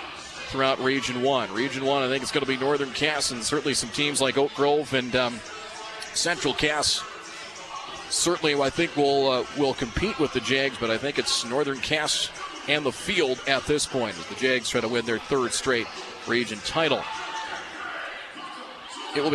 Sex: male